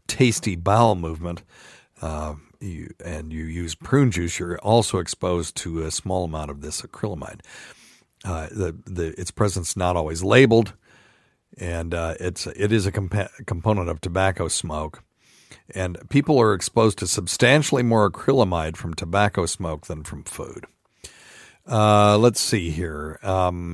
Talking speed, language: 145 wpm, English